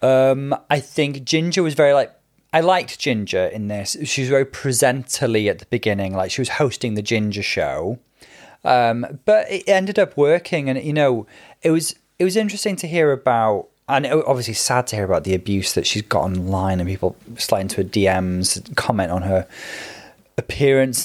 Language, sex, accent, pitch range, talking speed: English, male, British, 110-145 Hz, 190 wpm